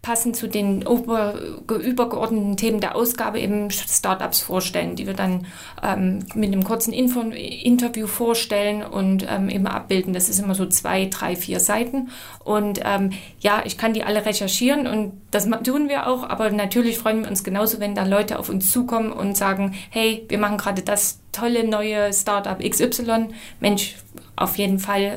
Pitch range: 200-240 Hz